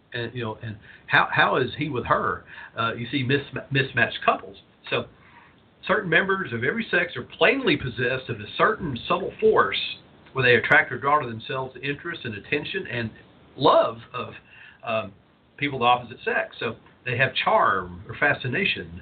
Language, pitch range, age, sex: English, 115-145 Hz, 50-69, male